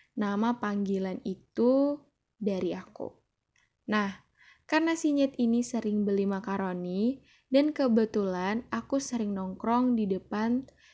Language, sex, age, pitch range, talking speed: Indonesian, female, 10-29, 195-235 Hz, 105 wpm